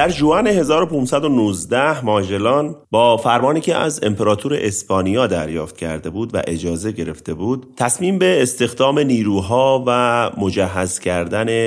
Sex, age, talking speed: male, 30-49, 125 wpm